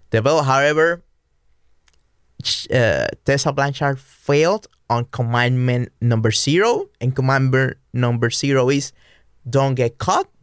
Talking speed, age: 105 wpm, 20-39